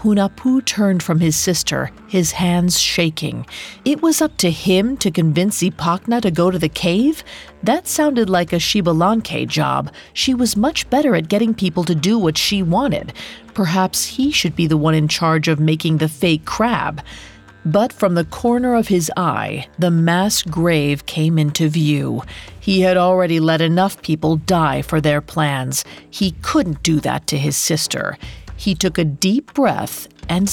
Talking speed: 175 wpm